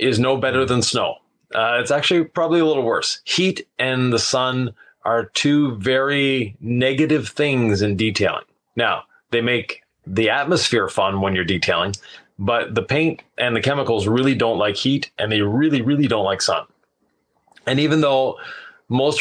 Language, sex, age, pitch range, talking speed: English, male, 30-49, 115-145 Hz, 165 wpm